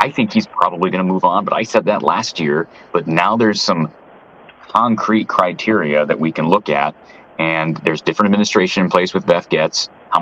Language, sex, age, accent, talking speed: English, male, 30-49, American, 205 wpm